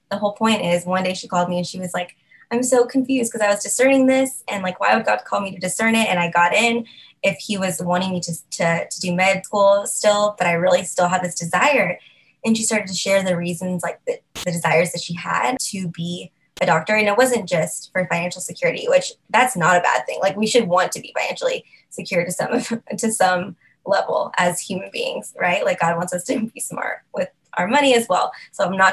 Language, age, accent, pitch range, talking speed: English, 20-39, American, 175-225 Hz, 245 wpm